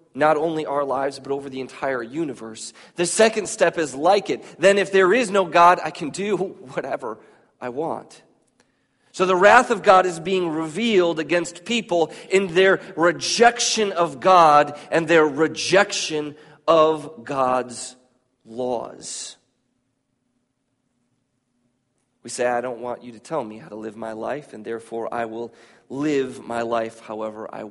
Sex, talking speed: male, 155 wpm